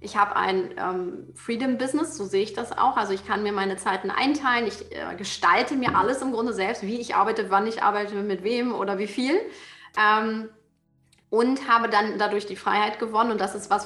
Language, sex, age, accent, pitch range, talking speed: German, female, 30-49, German, 195-230 Hz, 210 wpm